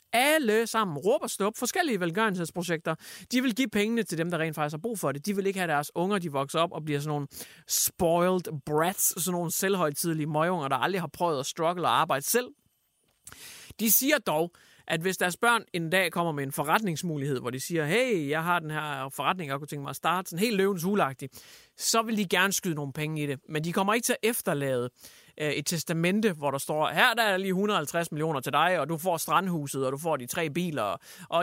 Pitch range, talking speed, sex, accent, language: 150-200 Hz, 225 wpm, male, Danish, English